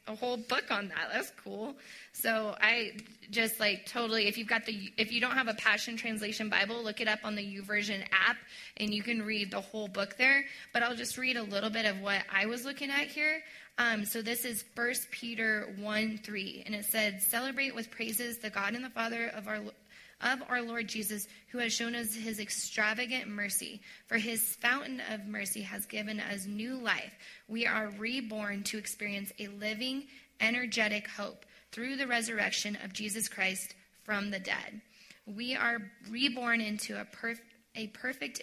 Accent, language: American, English